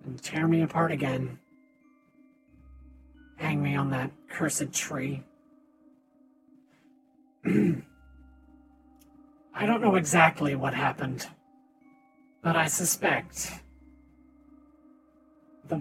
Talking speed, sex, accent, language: 80 wpm, male, American, English